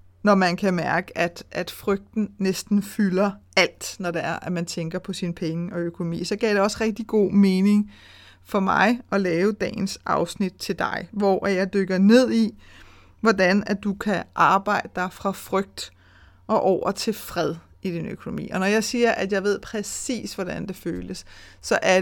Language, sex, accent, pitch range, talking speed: Danish, female, native, 175-215 Hz, 190 wpm